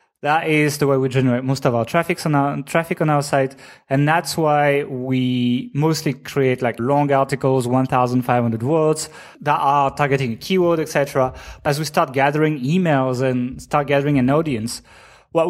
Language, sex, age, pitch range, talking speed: English, male, 20-39, 130-150 Hz, 165 wpm